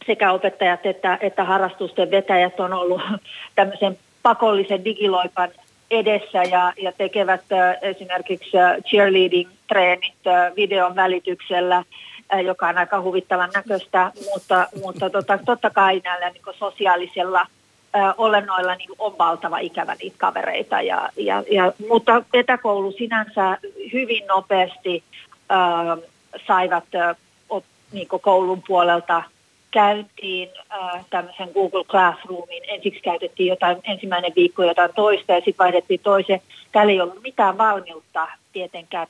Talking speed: 115 wpm